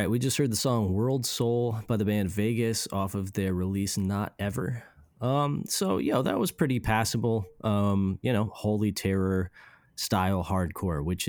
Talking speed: 175 wpm